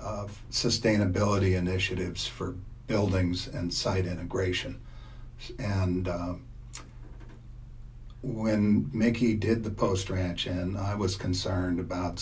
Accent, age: American, 60-79